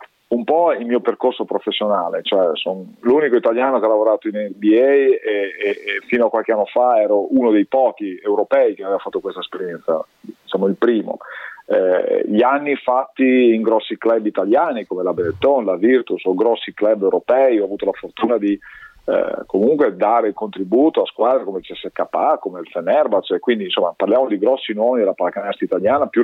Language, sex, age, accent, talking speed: Italian, male, 40-59, native, 185 wpm